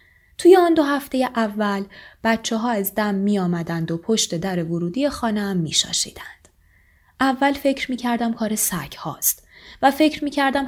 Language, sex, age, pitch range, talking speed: Persian, female, 20-39, 175-255 Hz, 140 wpm